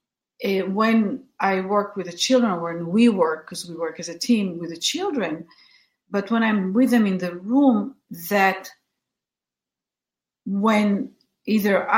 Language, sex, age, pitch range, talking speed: English, female, 50-69, 185-255 Hz, 145 wpm